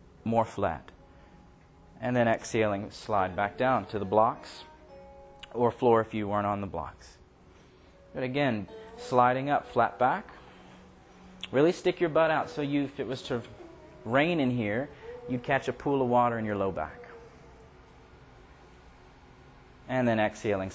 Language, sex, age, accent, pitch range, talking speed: English, male, 30-49, American, 100-145 Hz, 155 wpm